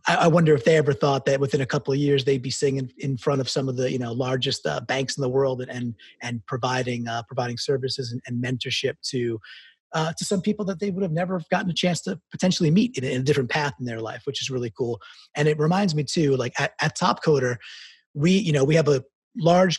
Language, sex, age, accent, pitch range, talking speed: English, male, 30-49, American, 125-155 Hz, 260 wpm